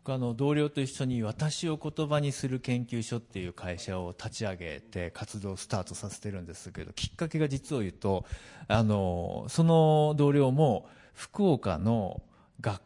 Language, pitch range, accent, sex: Japanese, 115-170 Hz, native, male